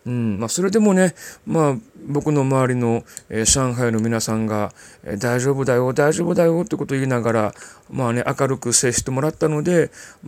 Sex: male